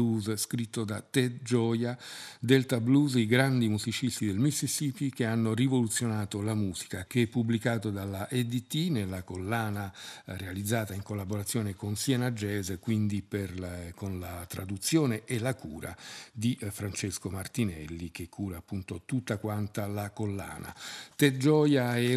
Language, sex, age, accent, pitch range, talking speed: Italian, male, 50-69, native, 100-125 Hz, 135 wpm